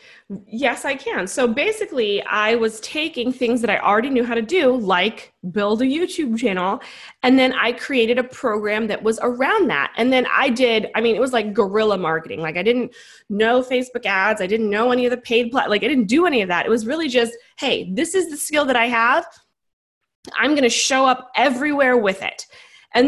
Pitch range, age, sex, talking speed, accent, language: 215-265 Hz, 20-39, female, 215 wpm, American, English